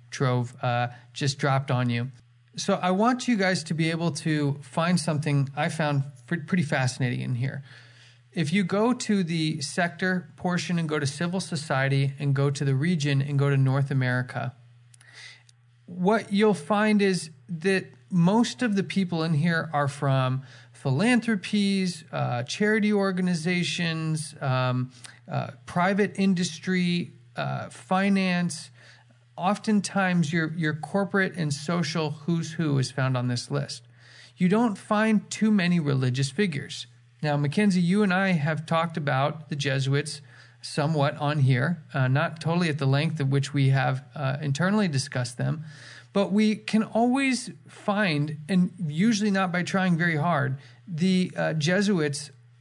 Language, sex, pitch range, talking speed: English, male, 135-185 Hz, 150 wpm